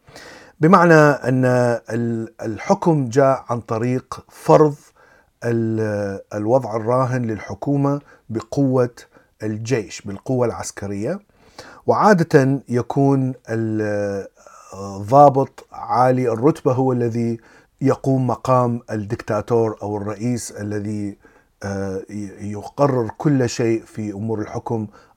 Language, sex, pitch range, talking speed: Arabic, male, 110-140 Hz, 80 wpm